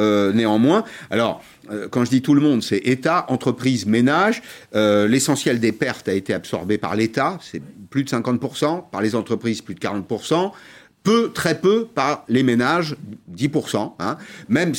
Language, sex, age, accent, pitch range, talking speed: French, male, 50-69, French, 105-150 Hz, 170 wpm